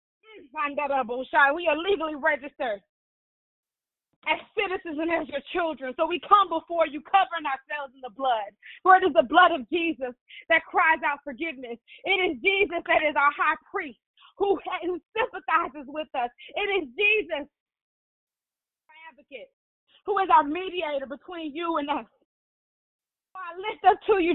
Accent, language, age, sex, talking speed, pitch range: American, English, 20-39, female, 150 wpm, 310-380 Hz